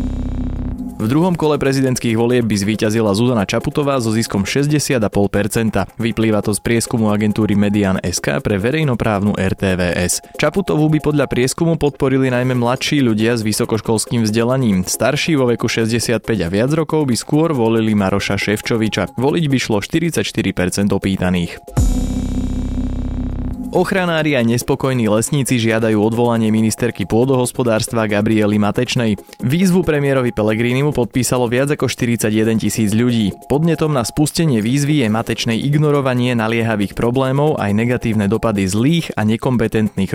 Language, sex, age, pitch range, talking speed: Slovak, male, 20-39, 105-130 Hz, 125 wpm